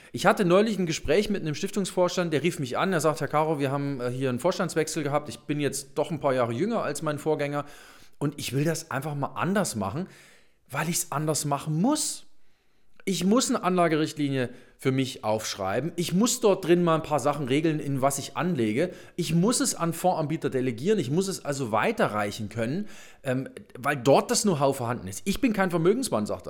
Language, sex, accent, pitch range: German, male, German, 135-180 Hz